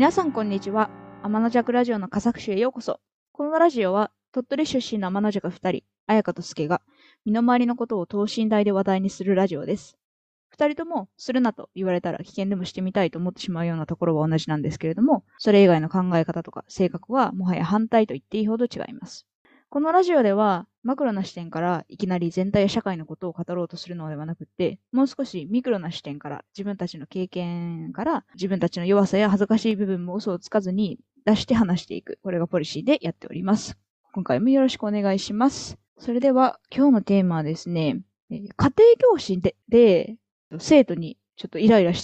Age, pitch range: 20-39, 175-240 Hz